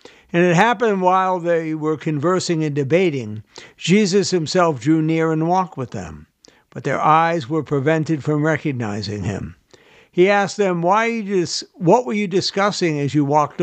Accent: American